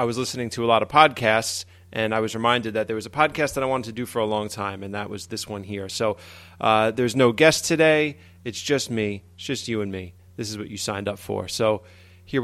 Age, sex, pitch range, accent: 30-49, male, 100-125 Hz, American